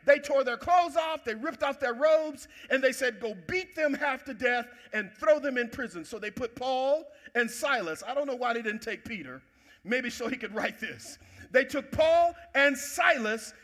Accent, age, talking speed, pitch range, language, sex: American, 50-69, 215 wpm, 245-320 Hz, English, male